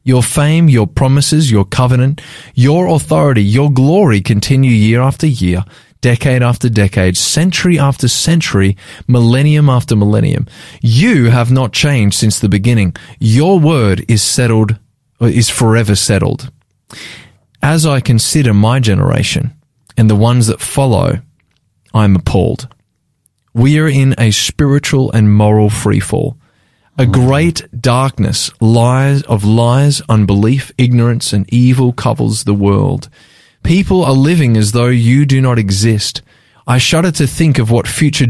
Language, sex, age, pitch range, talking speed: English, male, 20-39, 110-140 Hz, 135 wpm